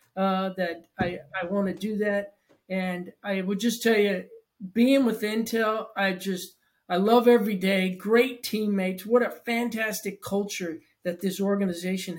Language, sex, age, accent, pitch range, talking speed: English, male, 40-59, American, 180-215 Hz, 155 wpm